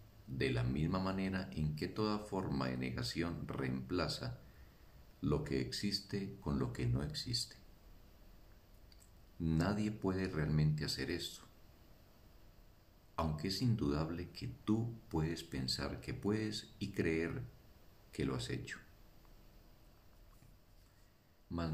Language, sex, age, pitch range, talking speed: Spanish, male, 50-69, 70-100 Hz, 110 wpm